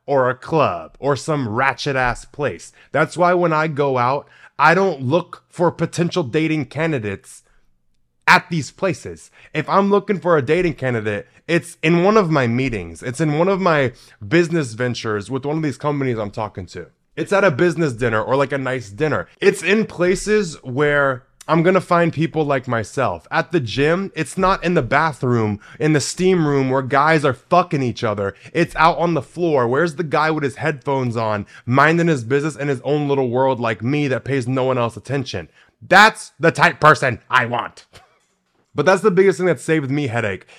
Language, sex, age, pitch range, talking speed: English, male, 20-39, 125-170 Hz, 195 wpm